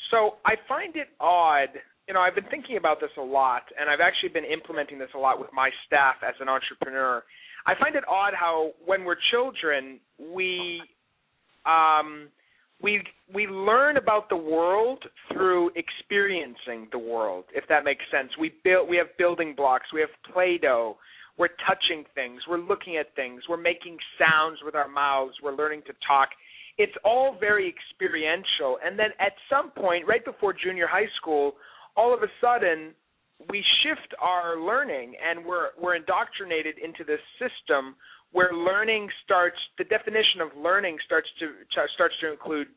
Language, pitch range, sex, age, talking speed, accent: English, 155-215 Hz, male, 40-59, 165 wpm, American